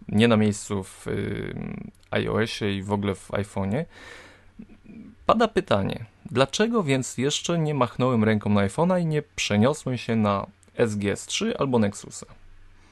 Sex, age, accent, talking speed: male, 20-39, native, 130 wpm